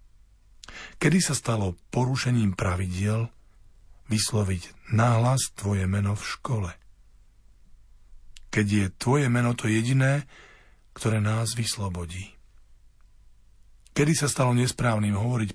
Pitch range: 95-115 Hz